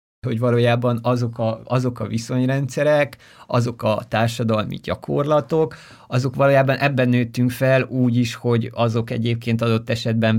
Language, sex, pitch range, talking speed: Hungarian, male, 110-125 Hz, 125 wpm